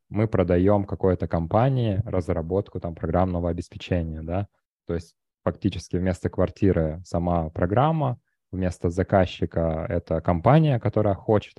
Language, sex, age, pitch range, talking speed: Russian, male, 20-39, 90-105 Hz, 115 wpm